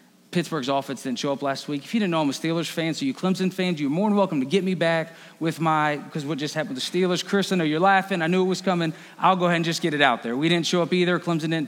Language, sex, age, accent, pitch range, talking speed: English, male, 30-49, American, 165-235 Hz, 320 wpm